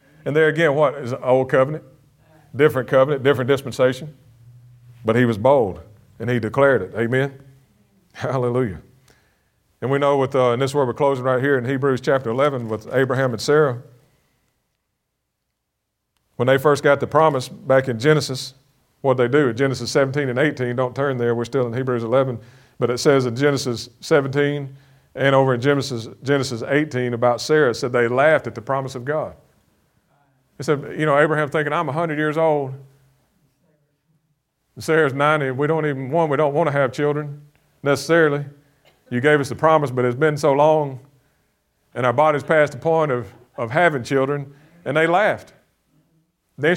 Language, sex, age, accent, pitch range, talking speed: English, male, 40-59, American, 125-150 Hz, 170 wpm